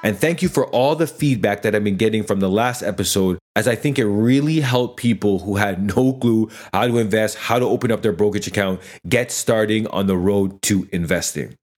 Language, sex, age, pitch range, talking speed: English, male, 30-49, 100-120 Hz, 220 wpm